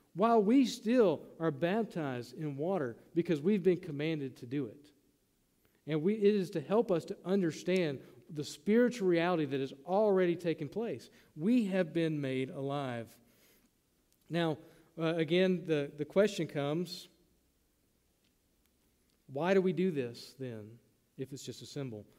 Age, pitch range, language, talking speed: 40-59, 155-205 Hz, English, 145 wpm